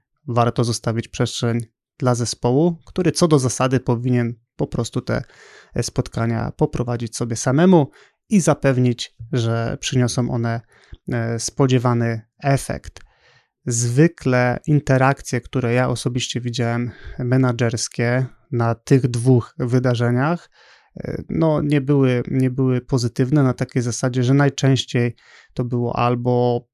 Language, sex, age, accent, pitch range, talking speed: Polish, male, 30-49, native, 120-135 Hz, 110 wpm